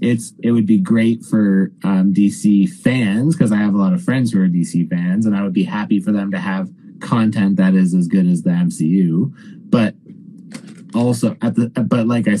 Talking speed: 215 wpm